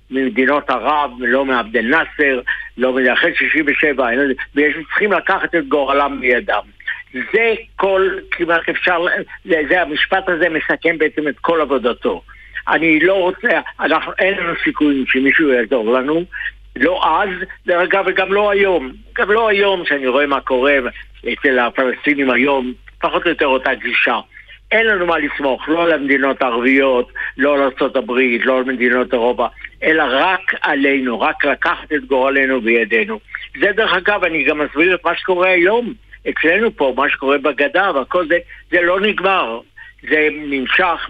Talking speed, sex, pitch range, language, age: 150 wpm, male, 130-170 Hz, Hebrew, 60-79